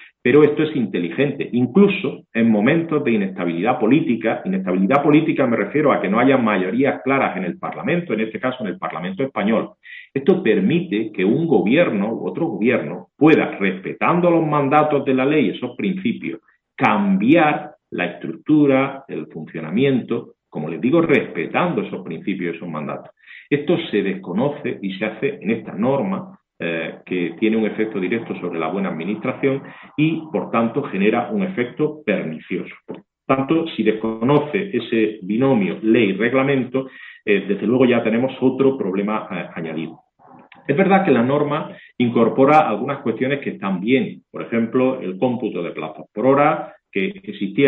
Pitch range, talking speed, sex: 105-145 Hz, 155 wpm, male